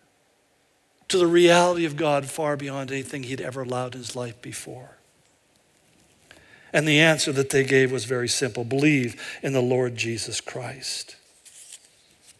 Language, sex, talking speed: English, male, 145 wpm